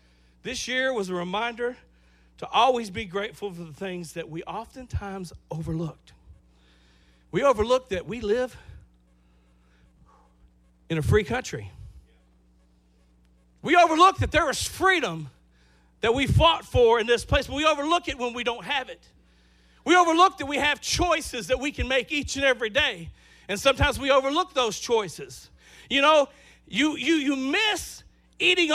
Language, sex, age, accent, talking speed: English, male, 50-69, American, 155 wpm